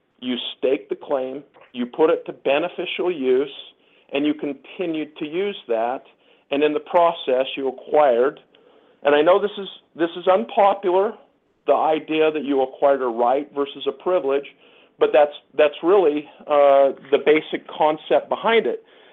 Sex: male